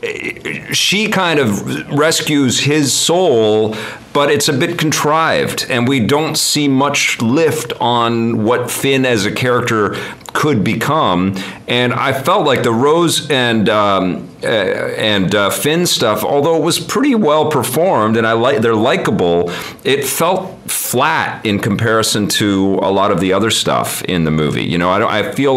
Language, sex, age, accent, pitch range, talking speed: English, male, 40-59, American, 95-135 Hz, 165 wpm